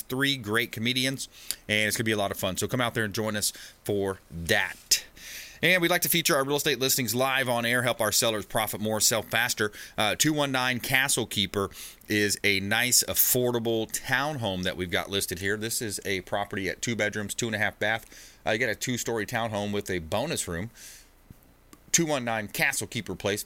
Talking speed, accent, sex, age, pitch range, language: 200 wpm, American, male, 30-49, 100-120 Hz, English